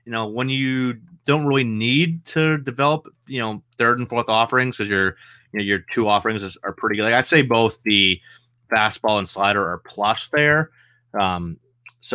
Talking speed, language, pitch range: 190 wpm, English, 105-130 Hz